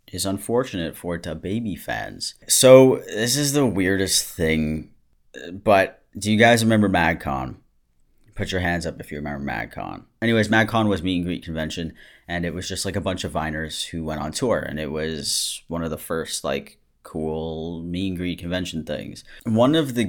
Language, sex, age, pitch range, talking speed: English, male, 30-49, 80-105 Hz, 195 wpm